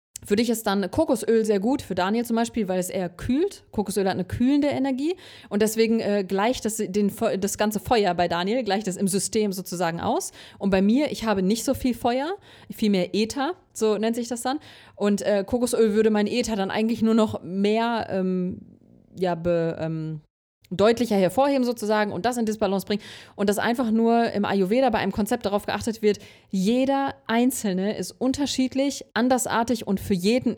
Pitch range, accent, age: 195-240 Hz, German, 30-49